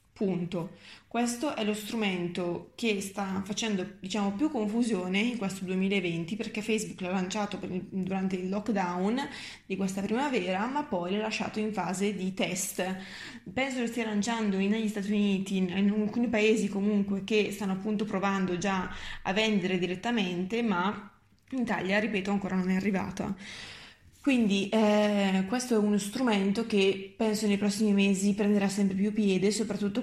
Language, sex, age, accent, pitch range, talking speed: Italian, female, 20-39, native, 190-215 Hz, 150 wpm